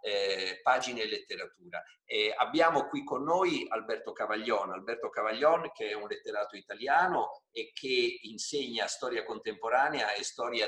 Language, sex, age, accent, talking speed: Italian, male, 50-69, native, 140 wpm